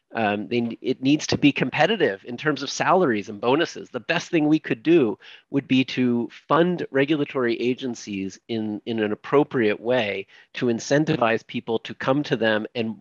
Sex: male